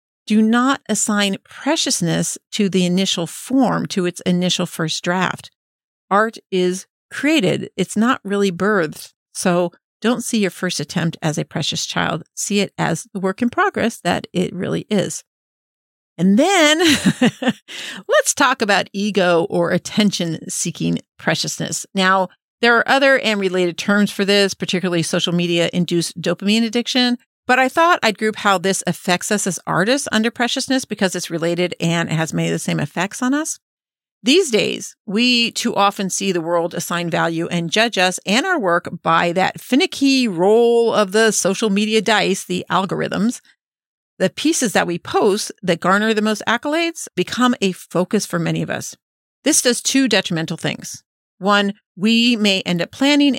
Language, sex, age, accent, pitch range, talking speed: English, female, 50-69, American, 175-235 Hz, 165 wpm